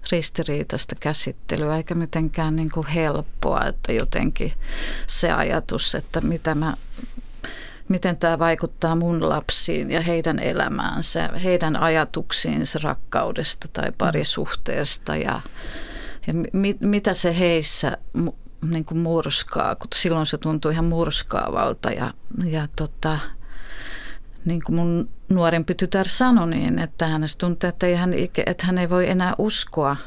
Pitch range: 150-175 Hz